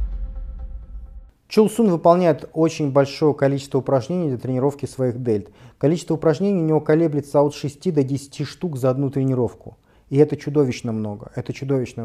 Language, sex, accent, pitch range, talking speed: Russian, male, native, 125-160 Hz, 145 wpm